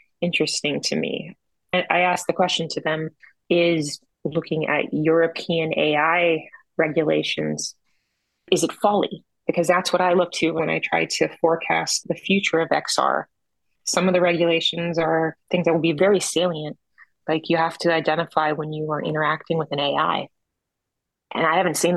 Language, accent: English, American